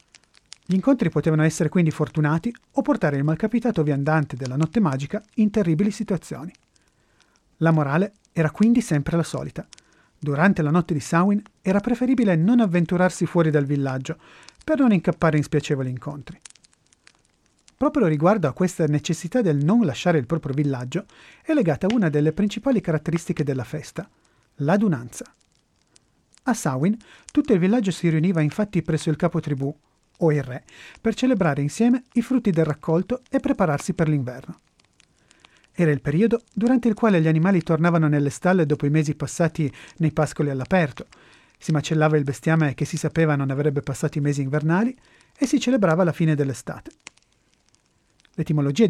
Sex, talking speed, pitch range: male, 155 wpm, 150-210 Hz